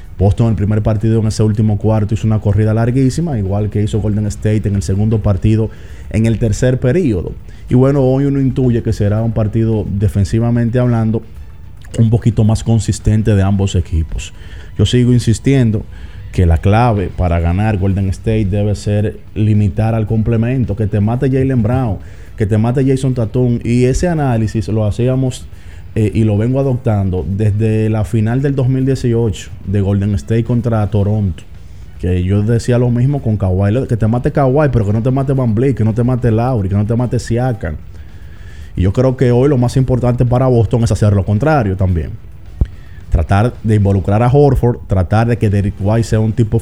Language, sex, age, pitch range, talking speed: Spanish, male, 30-49, 100-120 Hz, 185 wpm